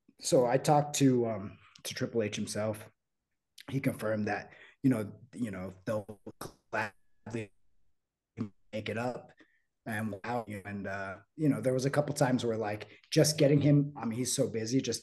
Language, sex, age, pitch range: English, male, 30-49, 100-135 Hz